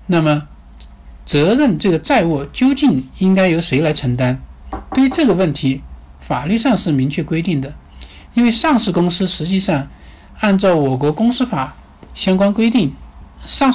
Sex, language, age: male, Chinese, 60-79